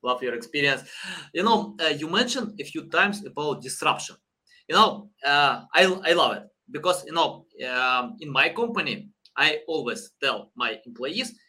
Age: 20-39